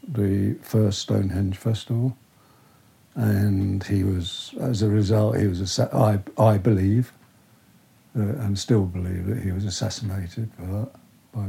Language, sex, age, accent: English, male, 60-79, British